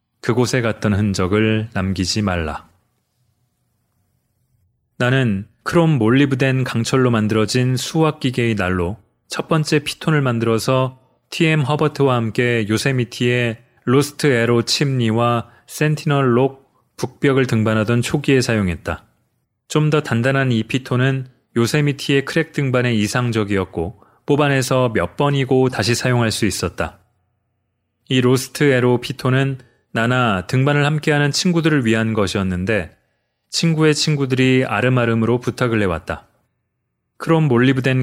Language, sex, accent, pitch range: Korean, male, native, 110-135 Hz